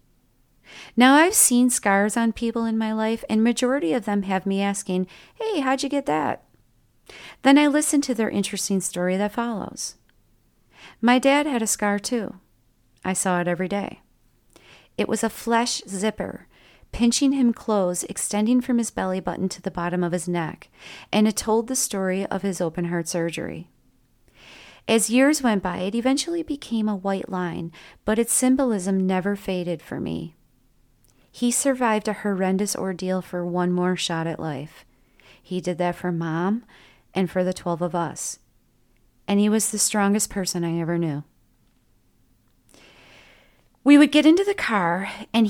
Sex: female